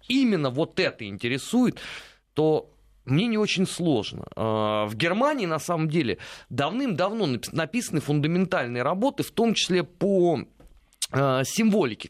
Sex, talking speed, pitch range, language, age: male, 115 wpm, 115-180 Hz, Russian, 30-49